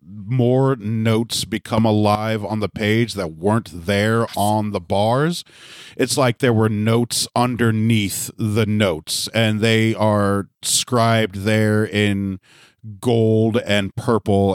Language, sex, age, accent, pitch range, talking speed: English, male, 40-59, American, 105-130 Hz, 125 wpm